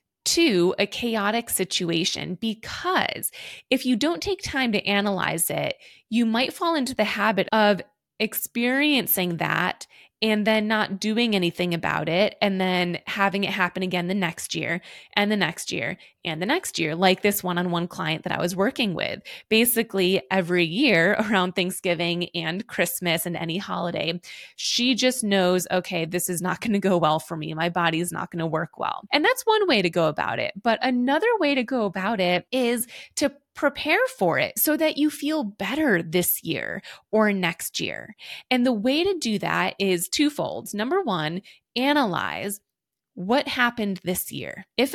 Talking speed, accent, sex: 175 wpm, American, female